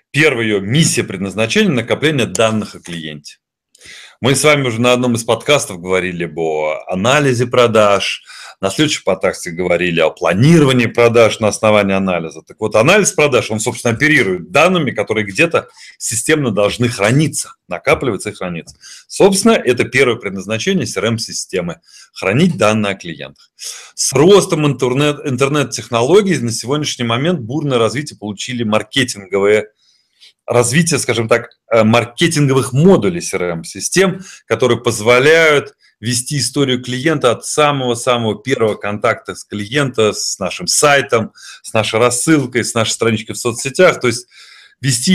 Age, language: 30-49, Russian